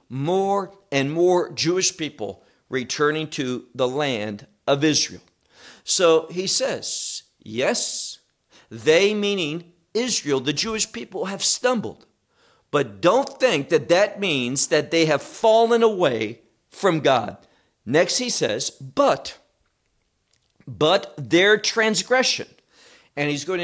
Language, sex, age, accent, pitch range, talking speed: English, male, 50-69, American, 145-215 Hz, 115 wpm